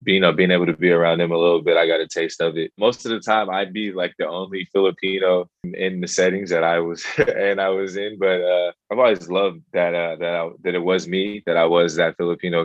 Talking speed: 255 wpm